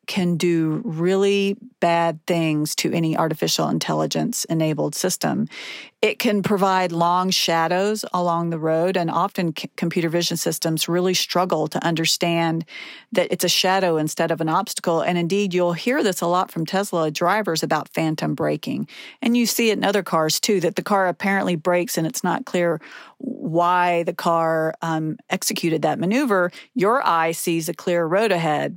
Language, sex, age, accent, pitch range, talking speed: English, female, 40-59, American, 170-195 Hz, 165 wpm